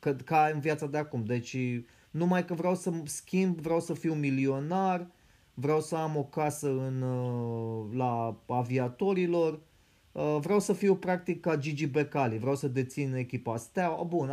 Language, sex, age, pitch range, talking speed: Romanian, male, 30-49, 125-160 Hz, 150 wpm